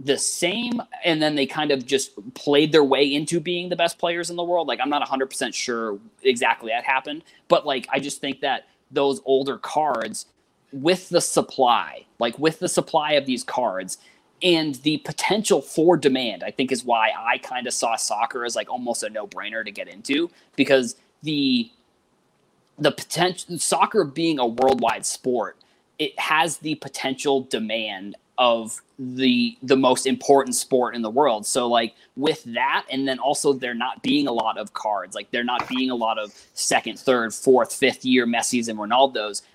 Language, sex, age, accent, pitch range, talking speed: English, male, 20-39, American, 125-165 Hz, 180 wpm